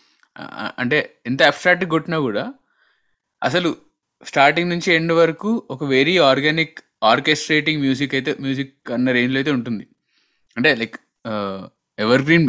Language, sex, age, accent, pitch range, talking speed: Telugu, male, 20-39, native, 115-160 Hz, 115 wpm